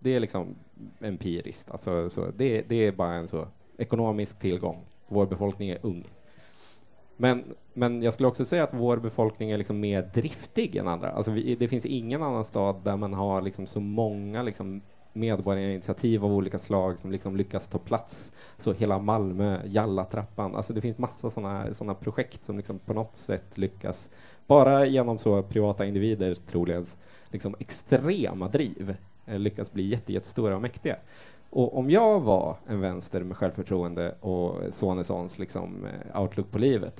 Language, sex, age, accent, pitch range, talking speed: Swedish, male, 20-39, Norwegian, 95-115 Hz, 160 wpm